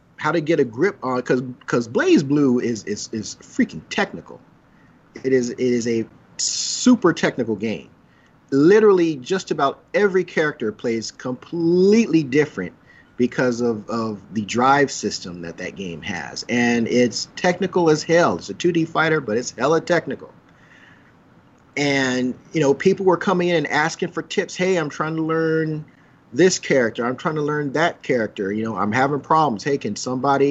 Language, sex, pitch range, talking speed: English, male, 120-160 Hz, 170 wpm